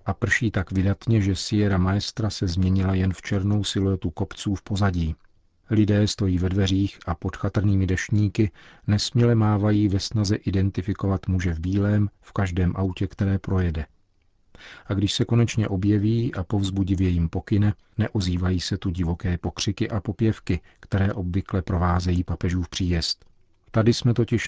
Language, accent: Czech, native